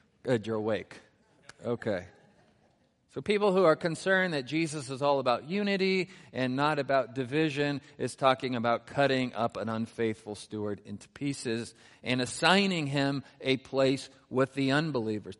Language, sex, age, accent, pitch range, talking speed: English, male, 50-69, American, 115-150 Hz, 145 wpm